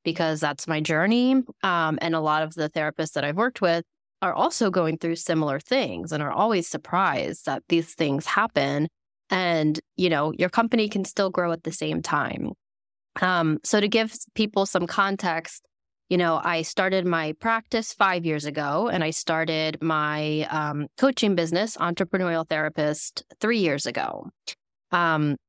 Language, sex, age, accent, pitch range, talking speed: English, female, 20-39, American, 155-195 Hz, 165 wpm